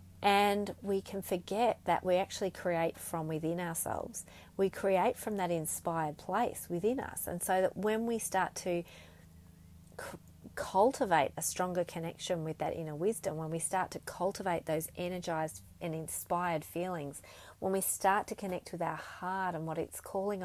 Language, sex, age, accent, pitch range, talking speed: English, female, 30-49, Australian, 165-205 Hz, 165 wpm